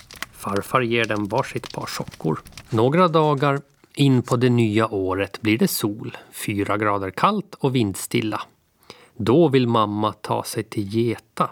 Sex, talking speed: male, 150 wpm